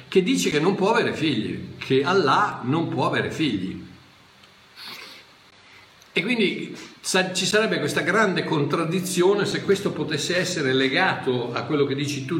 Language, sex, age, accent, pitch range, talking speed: Italian, male, 50-69, native, 130-205 Hz, 150 wpm